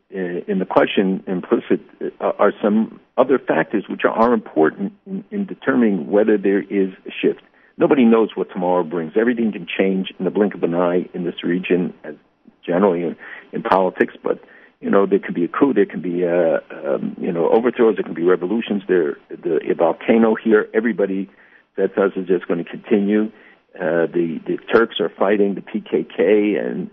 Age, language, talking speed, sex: 50-69, English, 190 wpm, male